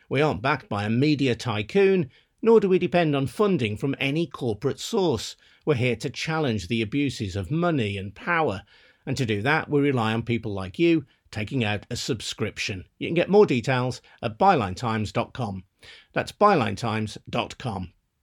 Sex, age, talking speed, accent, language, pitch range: male, 50-69, 165 wpm, British, English, 110-155 Hz